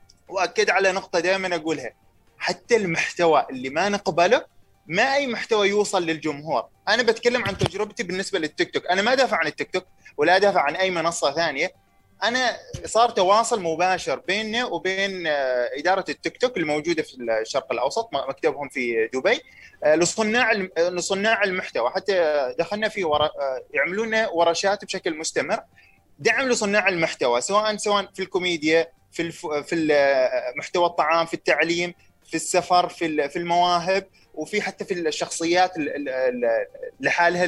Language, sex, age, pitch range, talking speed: Arabic, male, 20-39, 165-215 Hz, 130 wpm